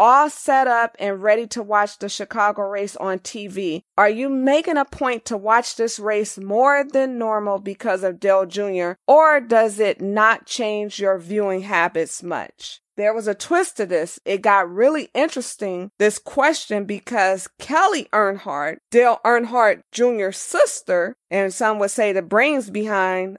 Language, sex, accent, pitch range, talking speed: English, female, American, 190-235 Hz, 160 wpm